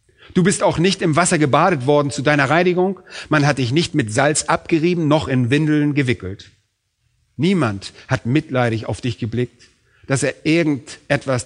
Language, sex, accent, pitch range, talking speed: German, male, German, 120-155 Hz, 160 wpm